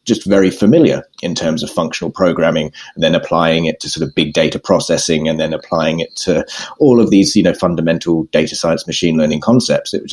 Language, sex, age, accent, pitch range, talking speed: English, male, 30-49, British, 80-110 Hz, 215 wpm